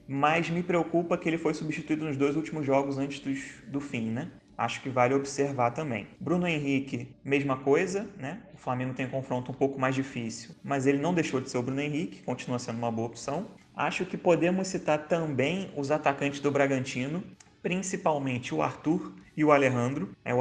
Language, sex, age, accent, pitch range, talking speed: Portuguese, male, 20-39, Brazilian, 130-160 Hz, 190 wpm